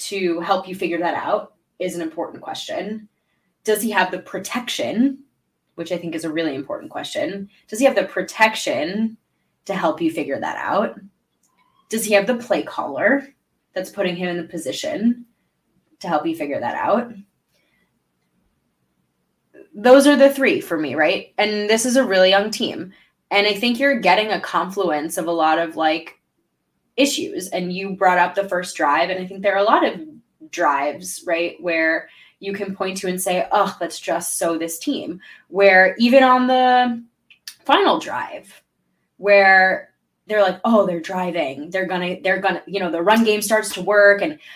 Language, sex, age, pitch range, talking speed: English, female, 20-39, 180-225 Hz, 180 wpm